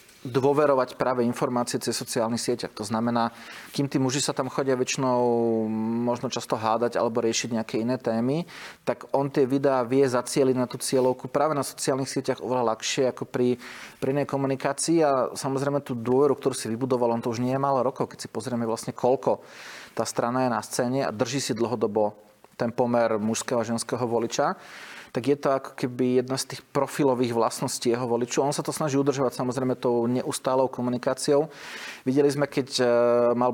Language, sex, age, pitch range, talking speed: Slovak, male, 30-49, 115-135 Hz, 180 wpm